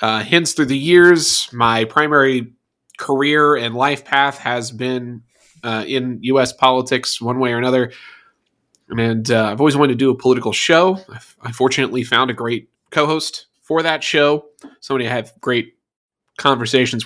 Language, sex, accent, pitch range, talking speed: English, male, American, 115-150 Hz, 160 wpm